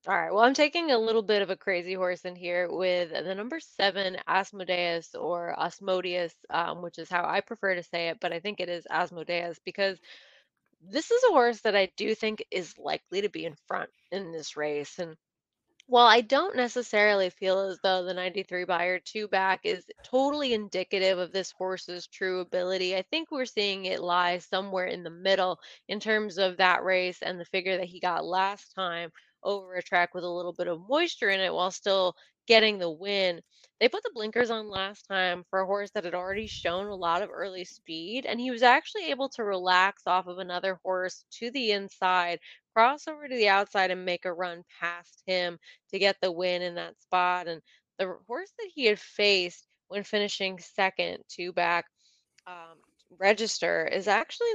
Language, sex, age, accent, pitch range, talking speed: English, female, 20-39, American, 180-215 Hz, 200 wpm